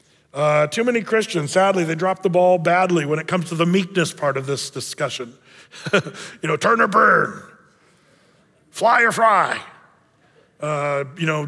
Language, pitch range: English, 150-190 Hz